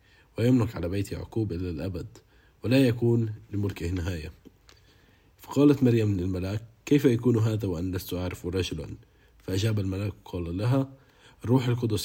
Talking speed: 130 wpm